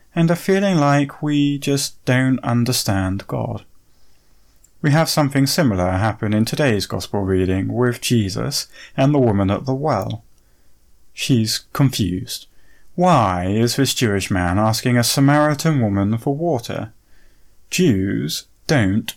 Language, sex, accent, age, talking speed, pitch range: English, male, British, 30-49, 130 wpm, 100-135 Hz